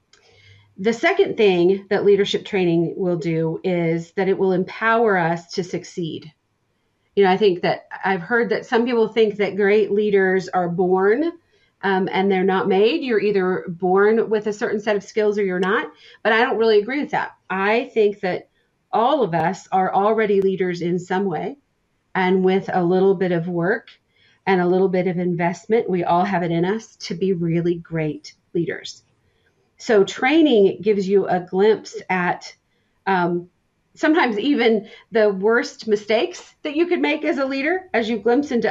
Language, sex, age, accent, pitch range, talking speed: English, female, 40-59, American, 180-220 Hz, 180 wpm